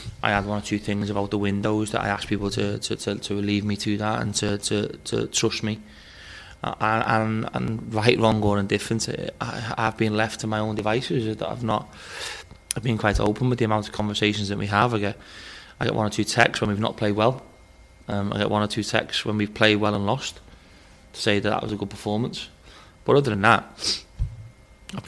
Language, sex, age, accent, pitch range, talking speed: English, male, 20-39, British, 100-110 Hz, 230 wpm